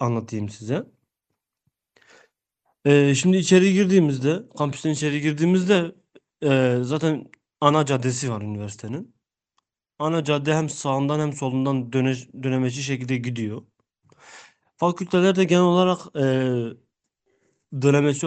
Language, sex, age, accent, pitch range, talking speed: Turkish, male, 30-49, native, 130-160 Hz, 100 wpm